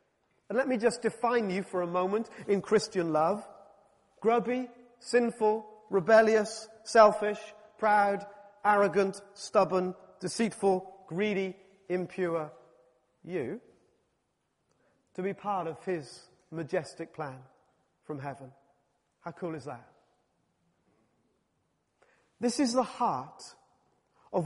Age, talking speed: 40-59, 100 wpm